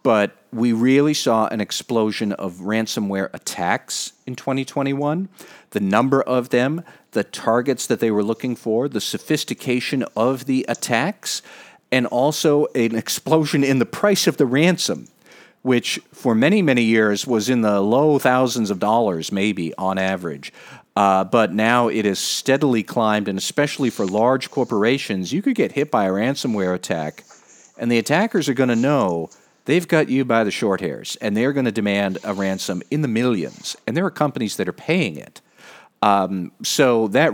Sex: male